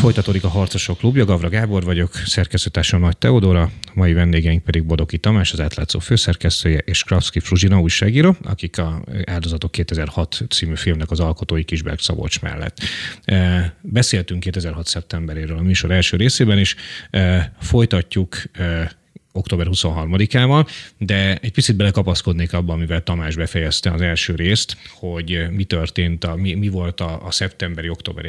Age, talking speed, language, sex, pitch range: 30-49, 140 wpm, Hungarian, male, 85-95 Hz